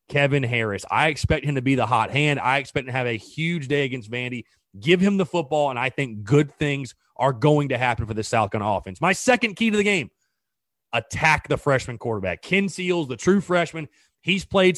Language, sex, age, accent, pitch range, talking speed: English, male, 30-49, American, 135-165 Hz, 225 wpm